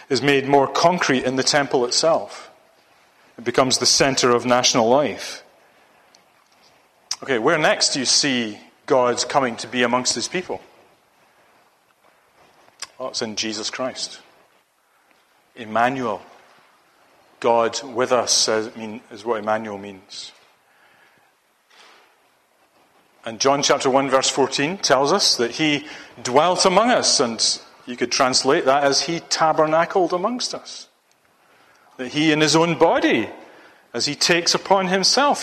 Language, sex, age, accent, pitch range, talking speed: English, male, 40-59, British, 125-180 Hz, 125 wpm